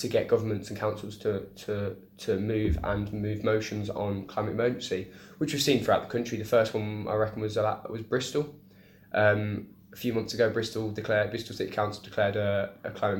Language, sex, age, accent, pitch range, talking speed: English, male, 10-29, British, 100-105 Hz, 200 wpm